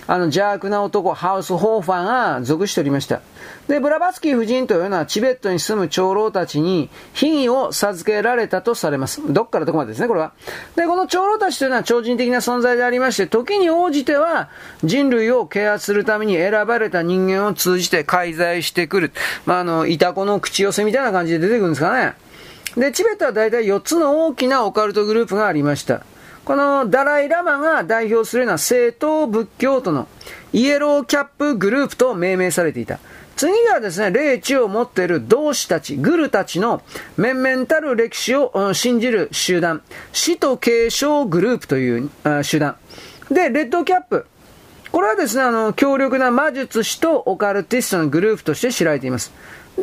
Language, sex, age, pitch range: Japanese, male, 40-59, 185-275 Hz